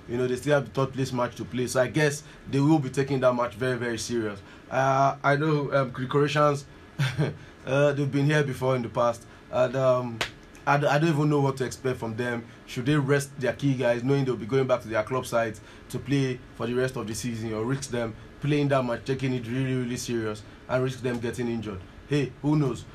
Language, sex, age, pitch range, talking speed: English, male, 20-39, 115-140 Hz, 240 wpm